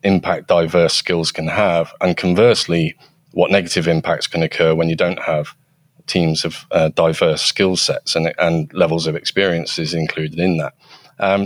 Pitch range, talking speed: 80-90 Hz, 160 wpm